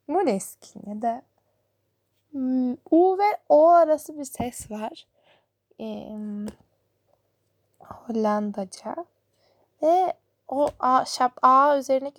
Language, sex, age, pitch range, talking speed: Turkish, female, 10-29, 210-260 Hz, 85 wpm